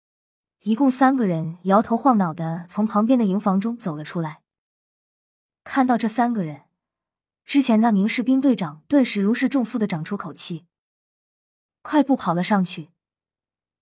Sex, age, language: female, 20-39, Chinese